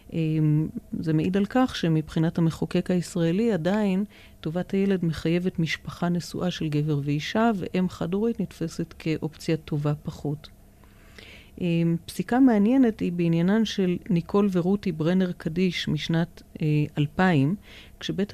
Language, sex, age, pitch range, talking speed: Hebrew, female, 40-59, 155-190 Hz, 125 wpm